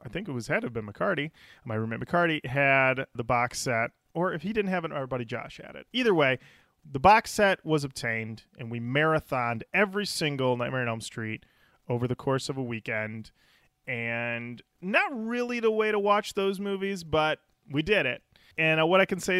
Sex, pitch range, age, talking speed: male, 125-180 Hz, 30-49, 205 wpm